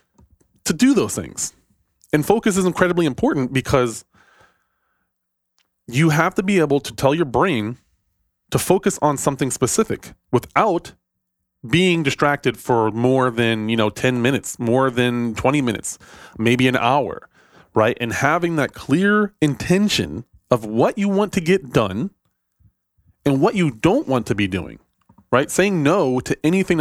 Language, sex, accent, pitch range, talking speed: English, male, American, 120-155 Hz, 150 wpm